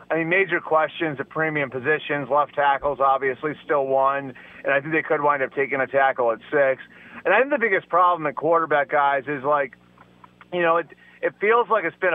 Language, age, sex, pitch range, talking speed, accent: English, 30-49, male, 140-170 Hz, 210 wpm, American